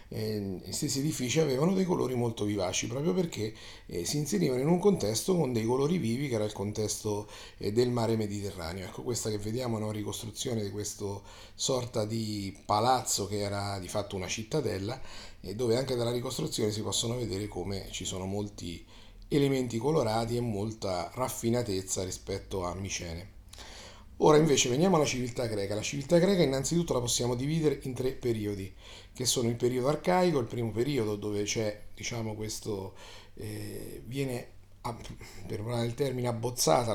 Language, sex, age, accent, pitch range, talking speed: Italian, male, 30-49, native, 105-130 Hz, 165 wpm